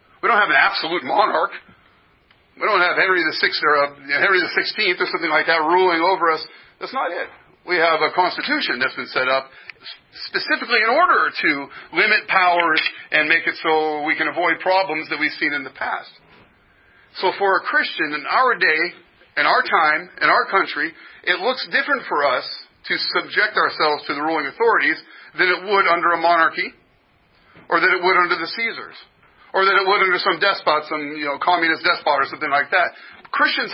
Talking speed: 195 wpm